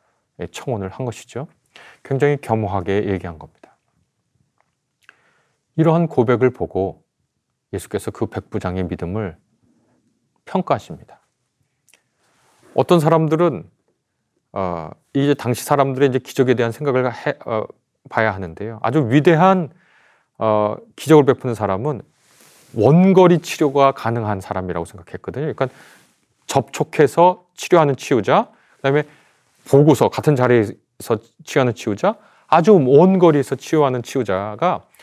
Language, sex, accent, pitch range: Korean, male, native, 110-155 Hz